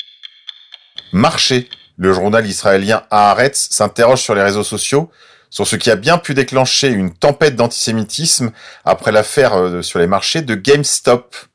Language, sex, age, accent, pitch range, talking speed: French, male, 40-59, French, 100-135 Hz, 140 wpm